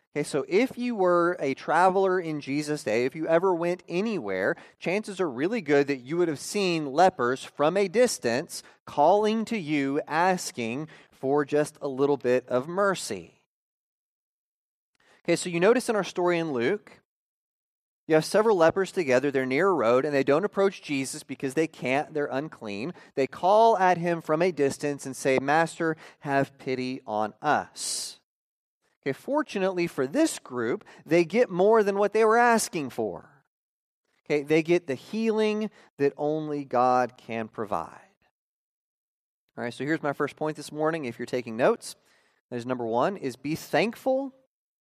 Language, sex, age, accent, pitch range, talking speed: English, male, 30-49, American, 135-190 Hz, 165 wpm